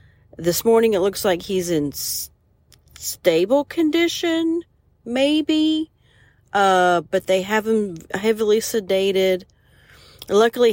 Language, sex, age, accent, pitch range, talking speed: English, female, 40-59, American, 155-215 Hz, 105 wpm